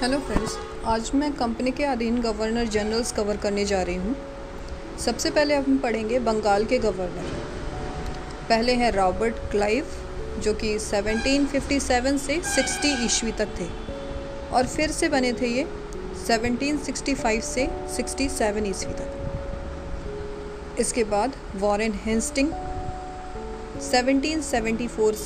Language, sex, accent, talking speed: Hindi, female, native, 120 wpm